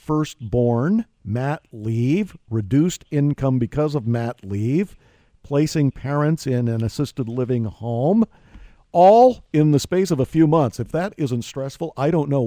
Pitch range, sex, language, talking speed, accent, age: 115-150 Hz, male, English, 150 wpm, American, 50-69